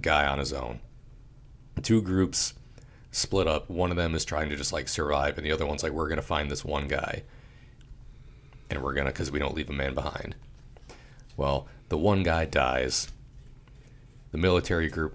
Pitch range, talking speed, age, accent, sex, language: 75-125 Hz, 180 wpm, 40-59, American, male, English